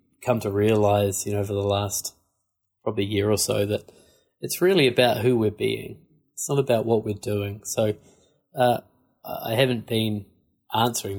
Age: 20-39